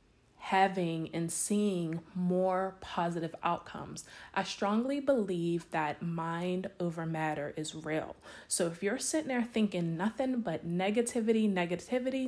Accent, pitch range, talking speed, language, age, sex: American, 170-215 Hz, 120 wpm, English, 20-39, female